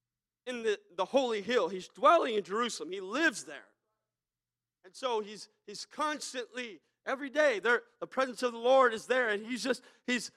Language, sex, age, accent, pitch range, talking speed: English, male, 40-59, American, 185-260 Hz, 180 wpm